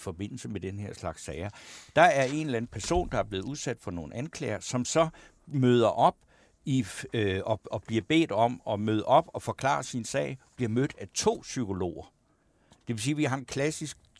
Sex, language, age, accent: male, Danish, 60-79, native